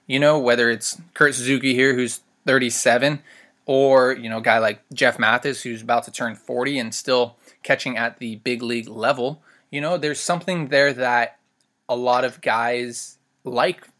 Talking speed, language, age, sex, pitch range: 175 wpm, English, 20-39, male, 120-145 Hz